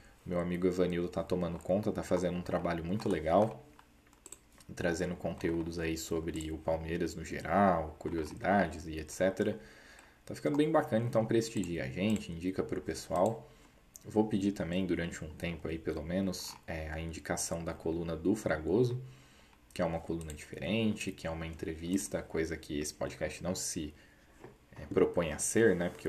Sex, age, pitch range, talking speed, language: male, 20-39, 80-100 Hz, 165 wpm, Portuguese